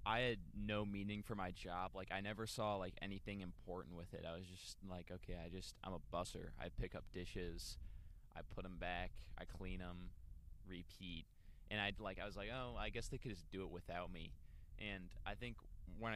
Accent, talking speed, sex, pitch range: American, 215 wpm, male, 90-105 Hz